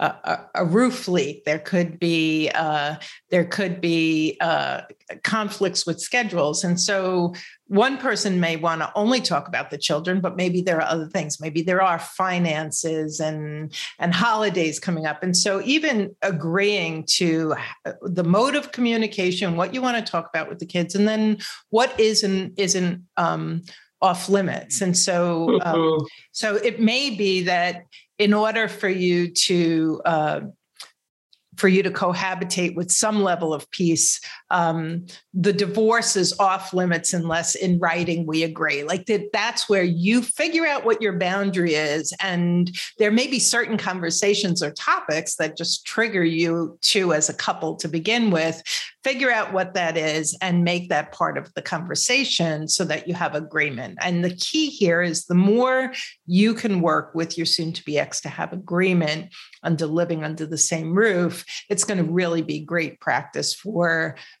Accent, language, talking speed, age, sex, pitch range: American, English, 165 wpm, 50-69, female, 165-205 Hz